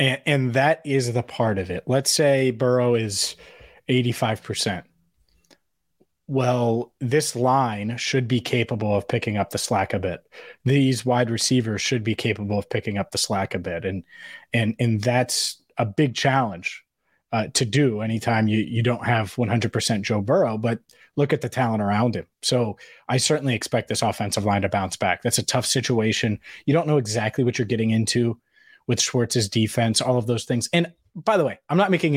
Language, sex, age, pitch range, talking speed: English, male, 30-49, 115-135 Hz, 185 wpm